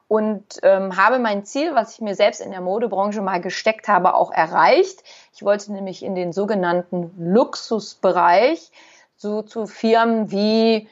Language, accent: German, German